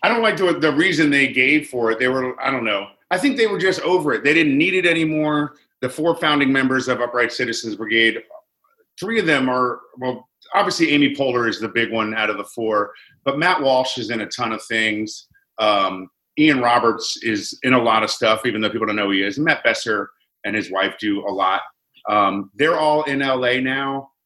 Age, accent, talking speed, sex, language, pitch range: 40-59, American, 230 wpm, male, English, 110-145 Hz